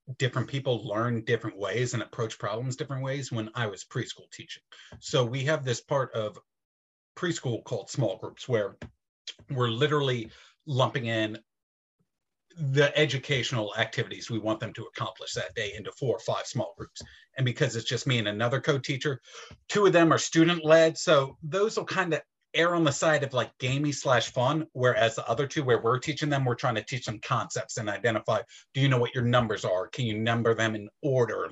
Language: English